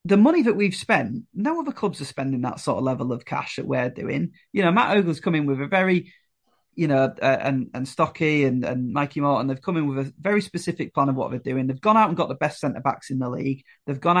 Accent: British